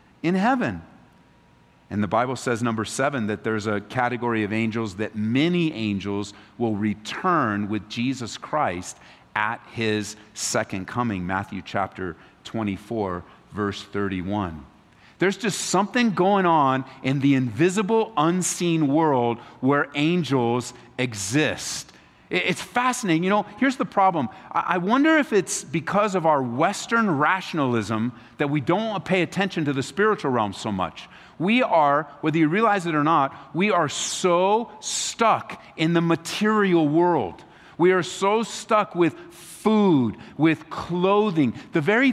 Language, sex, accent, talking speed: English, male, American, 140 wpm